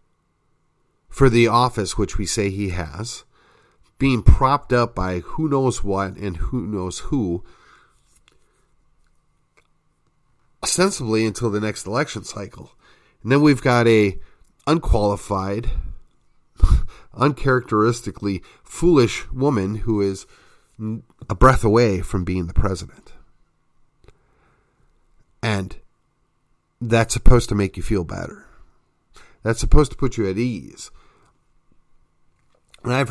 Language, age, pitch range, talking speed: English, 40-59, 95-120 Hz, 110 wpm